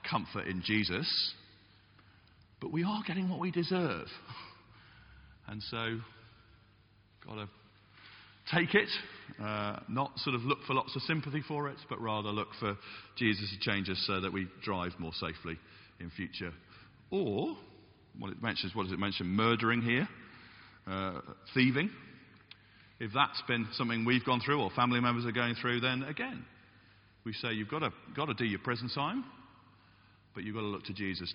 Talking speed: 165 wpm